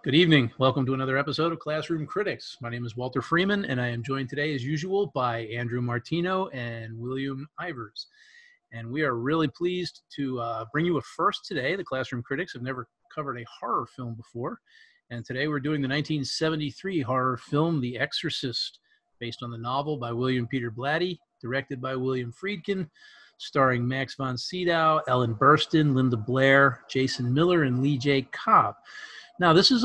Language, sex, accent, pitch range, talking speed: English, male, American, 125-160 Hz, 175 wpm